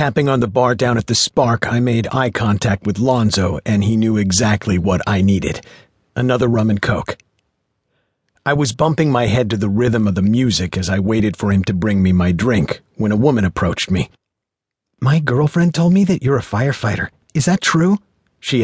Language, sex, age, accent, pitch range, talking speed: English, male, 50-69, American, 105-135 Hz, 205 wpm